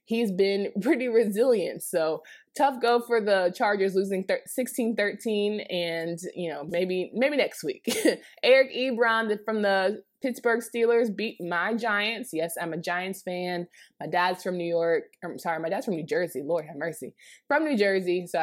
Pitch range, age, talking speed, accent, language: 180-235 Hz, 20-39, 175 wpm, American, English